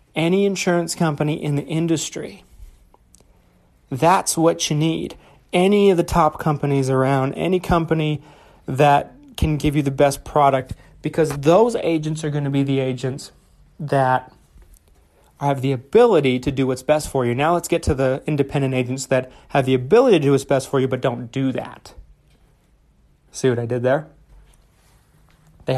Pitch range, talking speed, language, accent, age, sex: 130-165 Hz, 165 wpm, English, American, 30-49, male